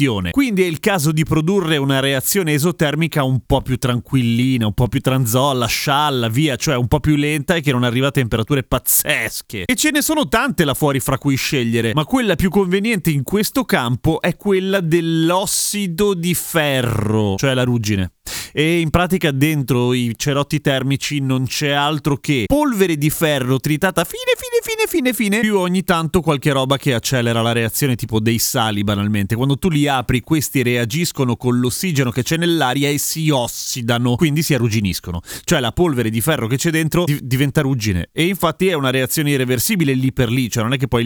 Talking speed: 190 wpm